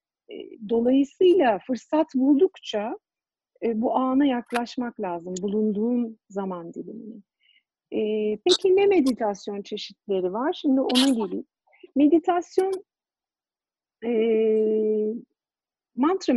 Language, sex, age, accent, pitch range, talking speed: Turkish, female, 50-69, native, 210-295 Hz, 75 wpm